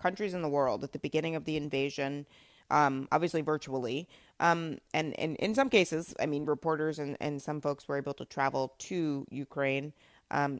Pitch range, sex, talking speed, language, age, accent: 140-175 Hz, female, 185 wpm, English, 30-49, American